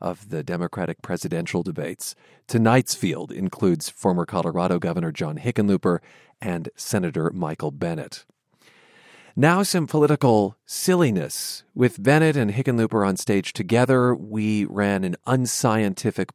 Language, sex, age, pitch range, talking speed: English, male, 40-59, 100-150 Hz, 115 wpm